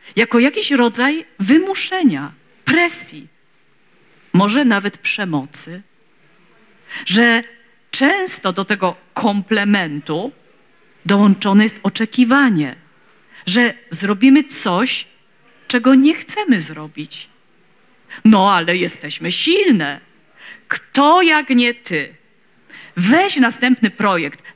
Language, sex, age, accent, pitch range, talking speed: Polish, female, 50-69, native, 200-285 Hz, 85 wpm